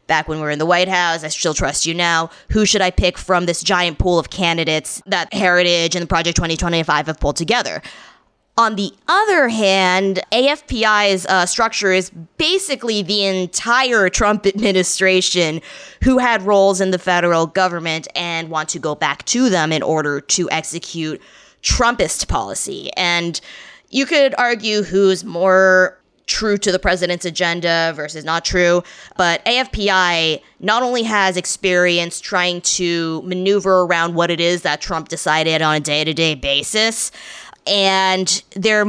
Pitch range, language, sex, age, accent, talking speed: 170-220 Hz, English, female, 20-39, American, 155 wpm